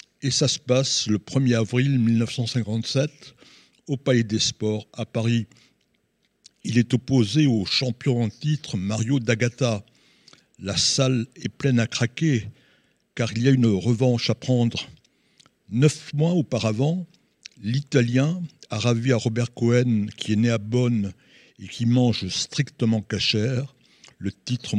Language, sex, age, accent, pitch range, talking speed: French, male, 60-79, French, 115-140 Hz, 140 wpm